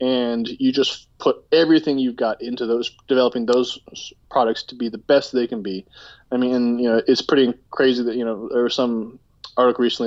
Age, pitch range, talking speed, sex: 20-39, 115-140 Hz, 205 wpm, male